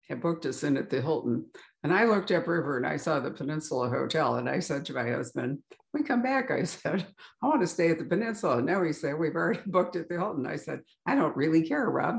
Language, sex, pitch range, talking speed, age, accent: English, female, 155-220 Hz, 250 wpm, 60-79, American